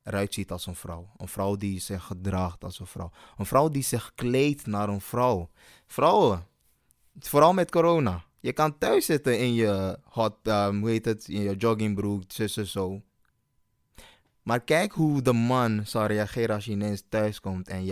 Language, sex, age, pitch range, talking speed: Dutch, male, 20-39, 95-120 Hz, 180 wpm